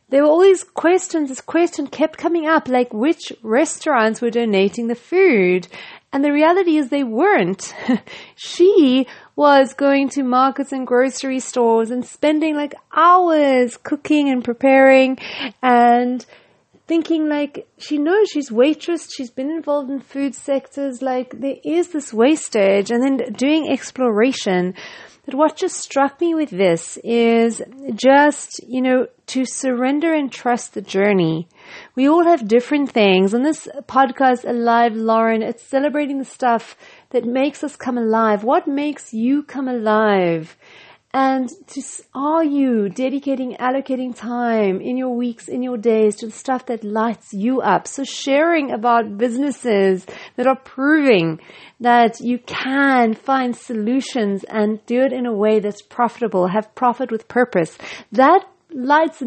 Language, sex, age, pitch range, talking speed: English, female, 30-49, 235-290 Hz, 150 wpm